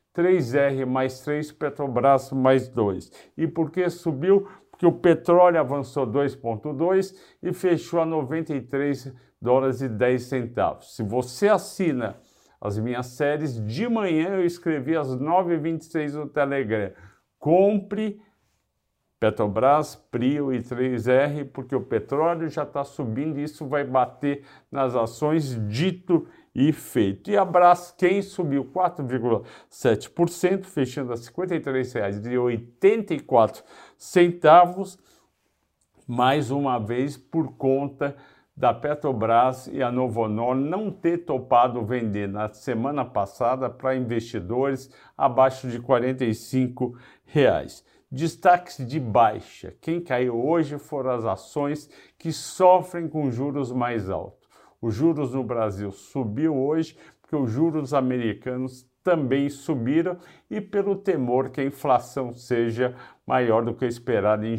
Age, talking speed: 50-69, 120 wpm